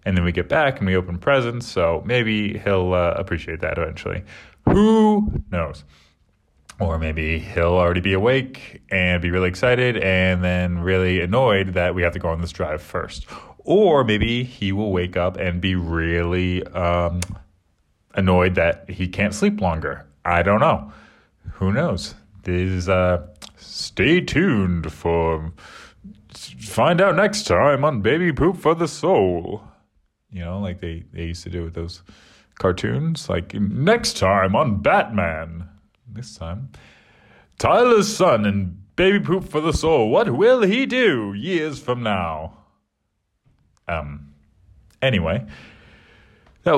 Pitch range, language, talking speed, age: 85-120 Hz, English, 145 wpm, 30-49